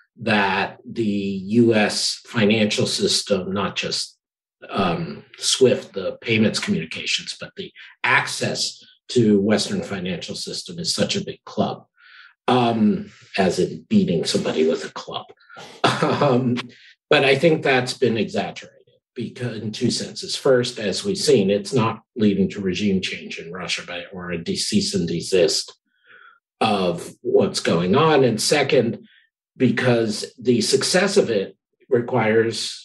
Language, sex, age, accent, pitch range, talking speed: English, male, 50-69, American, 105-140 Hz, 135 wpm